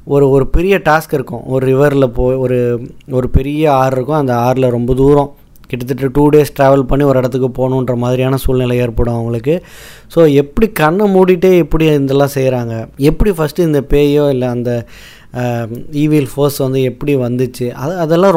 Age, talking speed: 20-39, 190 wpm